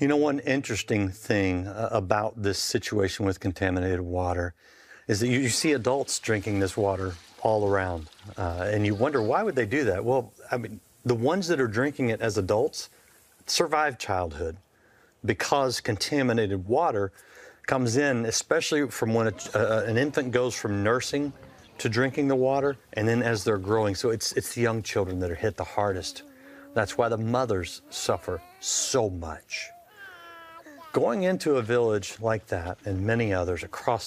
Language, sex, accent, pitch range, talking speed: English, male, American, 100-130 Hz, 165 wpm